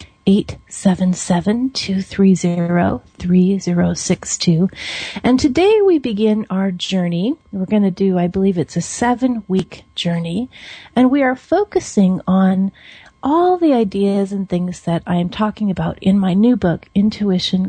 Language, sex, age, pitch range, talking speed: English, female, 40-59, 180-220 Hz, 155 wpm